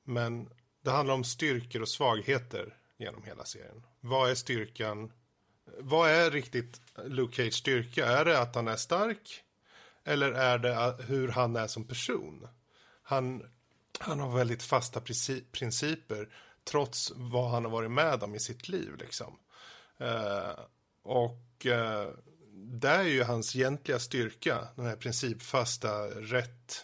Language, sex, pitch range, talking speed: Swedish, male, 115-135 Hz, 145 wpm